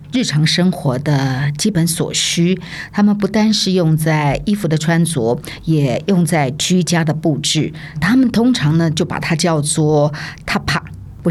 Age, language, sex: 50-69, Chinese, female